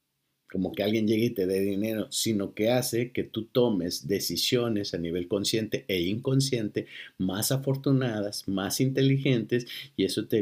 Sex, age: male, 50-69